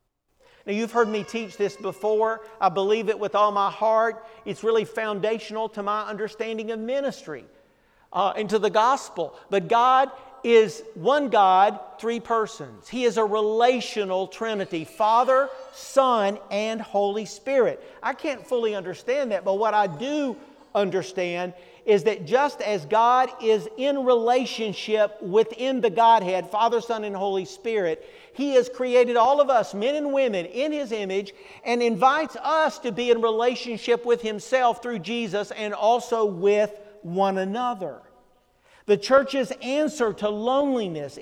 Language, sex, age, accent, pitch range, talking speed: English, male, 50-69, American, 205-245 Hz, 150 wpm